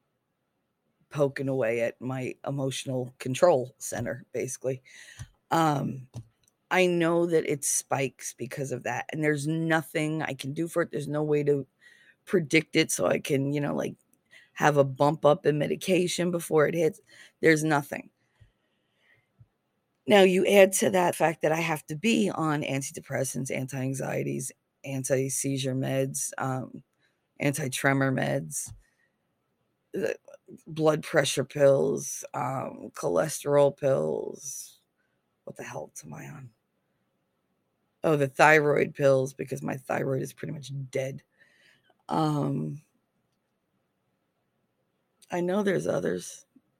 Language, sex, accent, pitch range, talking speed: English, female, American, 135-165 Hz, 120 wpm